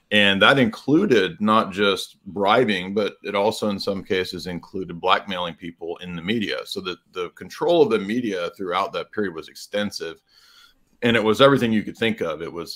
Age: 40-59